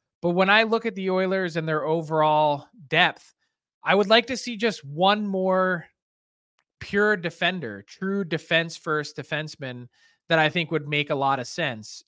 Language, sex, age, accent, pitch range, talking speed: English, male, 20-39, American, 145-180 Hz, 170 wpm